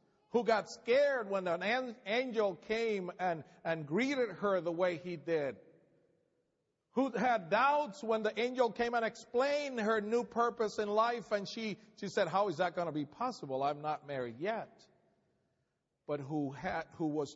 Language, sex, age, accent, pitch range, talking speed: English, male, 50-69, American, 165-220 Hz, 165 wpm